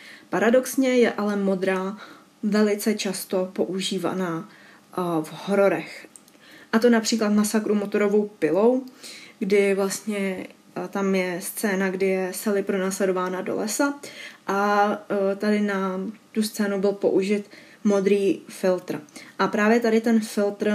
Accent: native